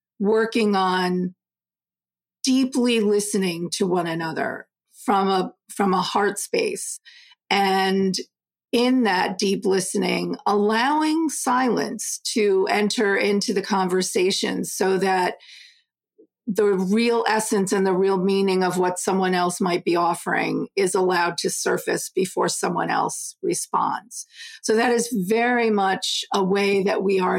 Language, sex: English, female